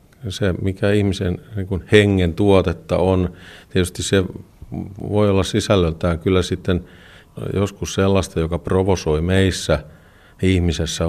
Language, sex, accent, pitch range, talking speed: Finnish, male, native, 80-95 Hz, 110 wpm